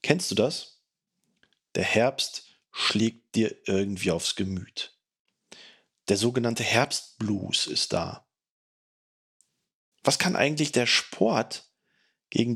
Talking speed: 100 wpm